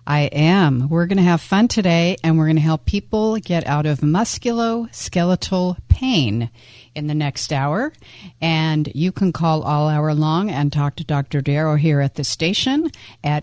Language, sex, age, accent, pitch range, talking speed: English, female, 50-69, American, 145-180 Hz, 180 wpm